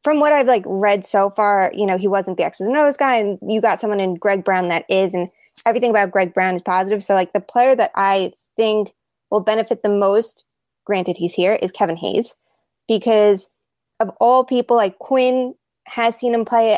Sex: female